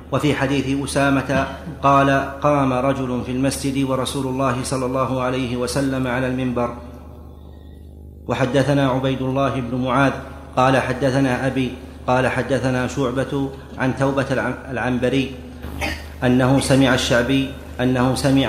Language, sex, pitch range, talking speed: Arabic, male, 125-135 Hz, 115 wpm